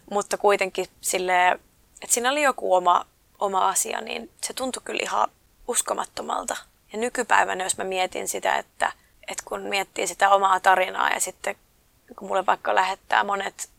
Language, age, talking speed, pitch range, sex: Finnish, 20-39, 155 wpm, 190-220 Hz, female